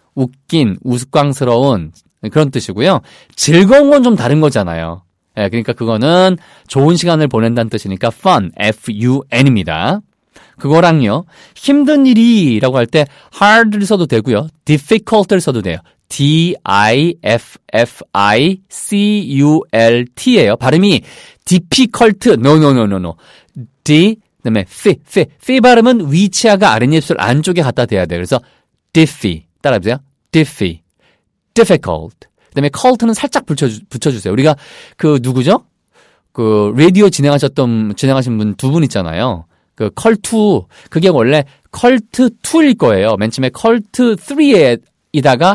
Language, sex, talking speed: English, male, 100 wpm